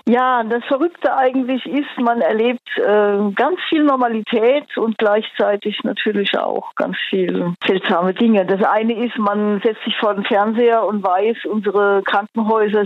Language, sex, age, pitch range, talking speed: German, female, 50-69, 195-235 Hz, 150 wpm